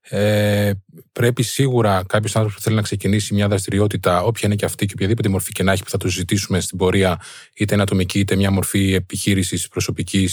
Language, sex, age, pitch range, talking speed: Greek, male, 20-39, 100-120 Hz, 200 wpm